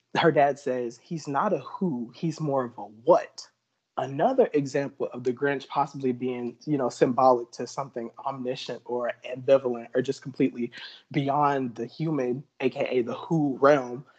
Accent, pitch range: American, 125-145 Hz